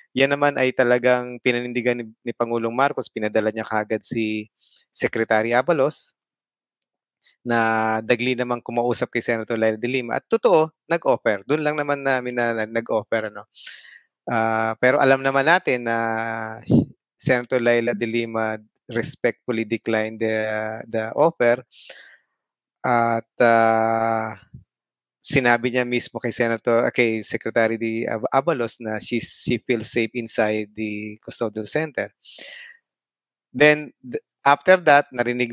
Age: 20-39